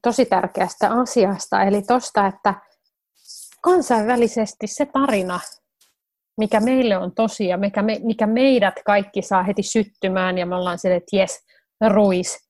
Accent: native